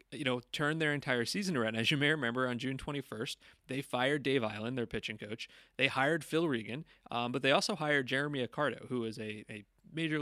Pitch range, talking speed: 120-150 Hz, 215 wpm